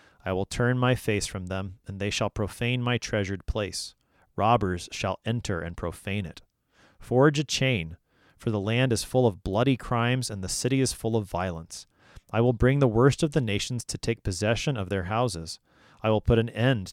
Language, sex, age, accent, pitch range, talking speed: English, male, 30-49, American, 95-120 Hz, 200 wpm